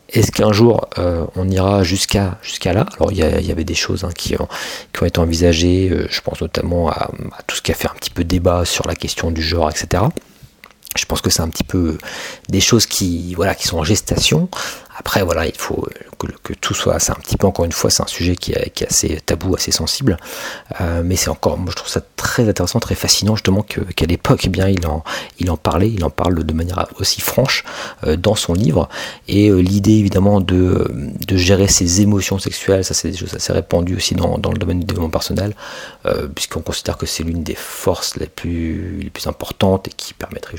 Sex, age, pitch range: male, 40-59, 85-105 Hz